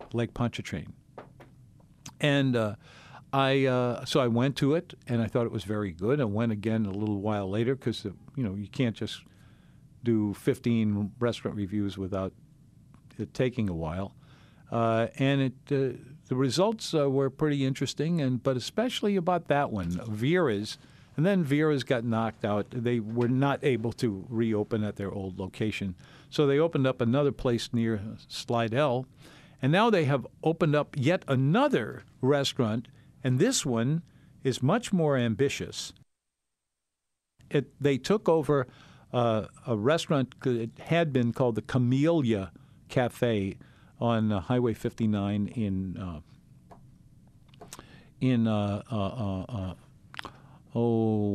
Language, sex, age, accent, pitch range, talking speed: English, male, 50-69, American, 110-140 Hz, 140 wpm